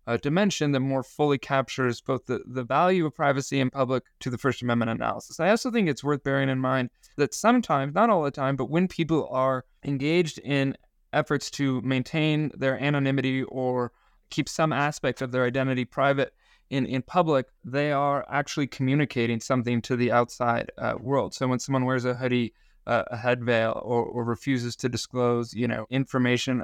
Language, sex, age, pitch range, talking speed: English, male, 20-39, 125-155 Hz, 185 wpm